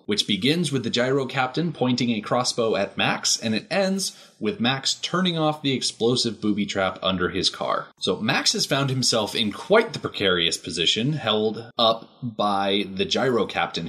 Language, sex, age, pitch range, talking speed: English, male, 30-49, 100-130 Hz, 175 wpm